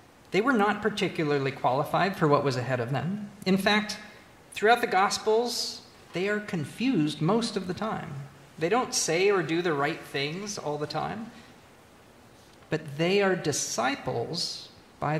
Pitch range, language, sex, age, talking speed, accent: 140-200 Hz, English, male, 40-59, 155 wpm, American